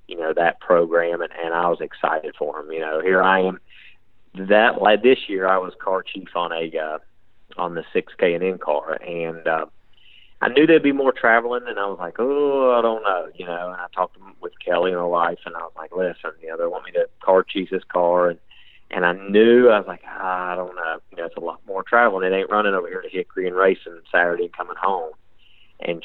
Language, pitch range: English, 95-120 Hz